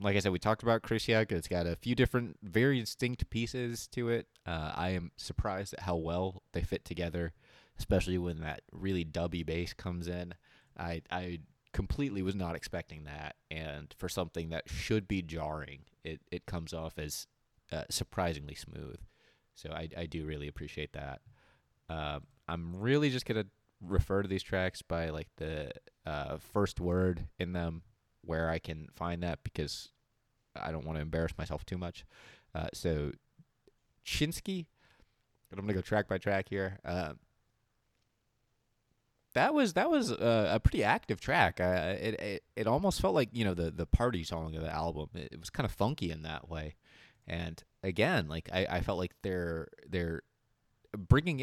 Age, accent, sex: 20-39, American, male